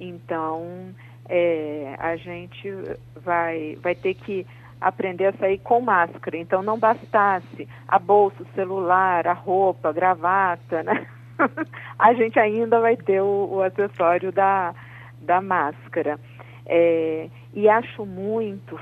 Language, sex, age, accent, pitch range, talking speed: Portuguese, female, 40-59, Brazilian, 155-195 Hz, 130 wpm